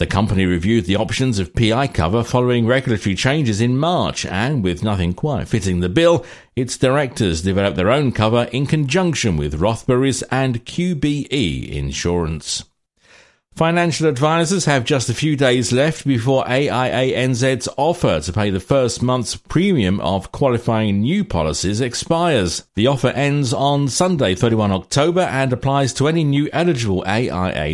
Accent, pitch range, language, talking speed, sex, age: British, 100-140 Hz, English, 150 wpm, male, 50-69